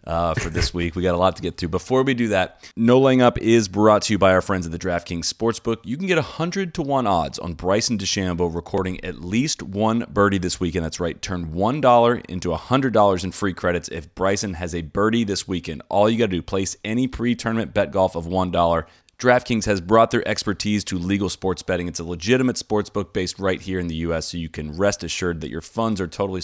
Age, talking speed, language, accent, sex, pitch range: 30-49, 245 wpm, English, American, male, 85-105 Hz